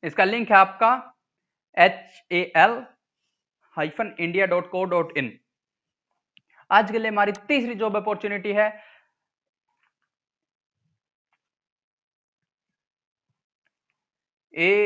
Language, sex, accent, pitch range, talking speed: Hindi, male, native, 165-195 Hz, 90 wpm